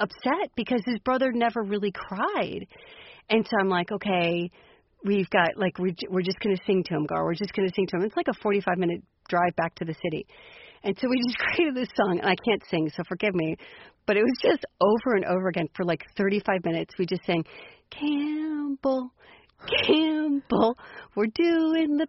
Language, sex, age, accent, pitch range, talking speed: English, female, 40-59, American, 195-270 Hz, 200 wpm